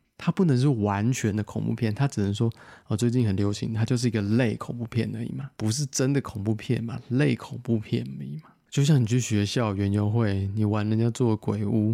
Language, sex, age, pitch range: Chinese, male, 20-39, 110-145 Hz